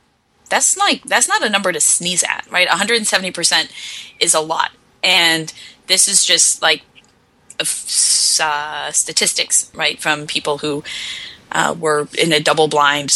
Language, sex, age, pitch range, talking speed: English, female, 10-29, 155-190 Hz, 155 wpm